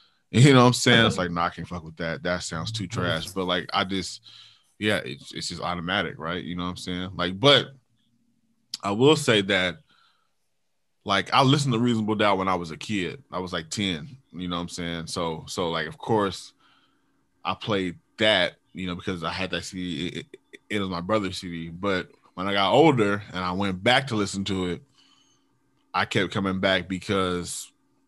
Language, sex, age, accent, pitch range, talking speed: English, male, 20-39, American, 90-105 Hz, 210 wpm